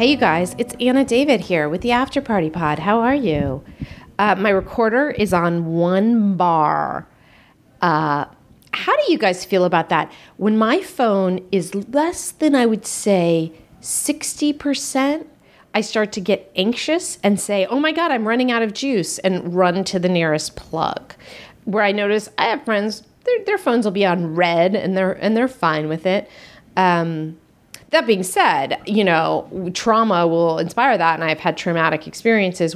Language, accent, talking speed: English, American, 175 wpm